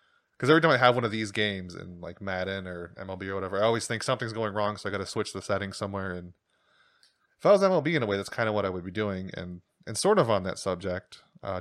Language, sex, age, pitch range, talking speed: English, male, 20-39, 100-125 Hz, 280 wpm